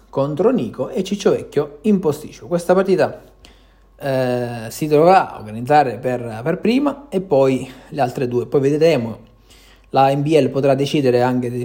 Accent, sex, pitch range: native, male, 115-145 Hz